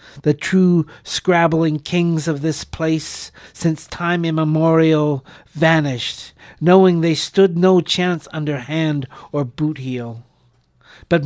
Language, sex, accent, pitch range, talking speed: English, male, American, 140-160 Hz, 115 wpm